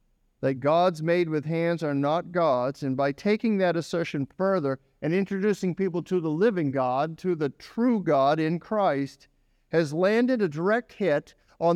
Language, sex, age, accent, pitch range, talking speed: English, male, 50-69, American, 145-190 Hz, 170 wpm